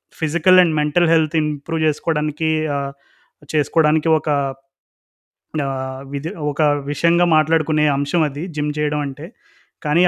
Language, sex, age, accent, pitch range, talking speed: Telugu, male, 20-39, native, 145-165 Hz, 105 wpm